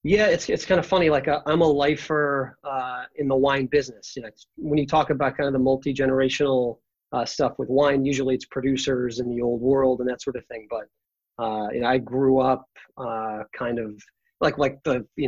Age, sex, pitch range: 30-49, male, 120-145 Hz